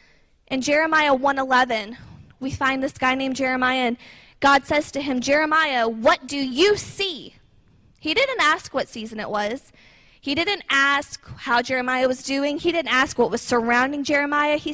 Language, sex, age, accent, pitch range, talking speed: English, female, 20-39, American, 255-310 Hz, 165 wpm